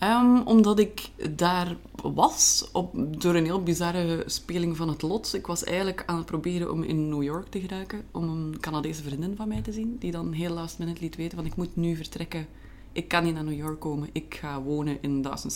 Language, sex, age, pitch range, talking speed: Dutch, female, 20-39, 155-180 Hz, 225 wpm